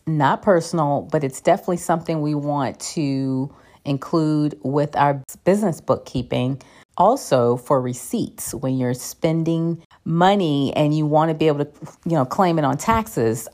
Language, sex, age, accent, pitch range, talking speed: English, female, 40-59, American, 135-180 Hz, 150 wpm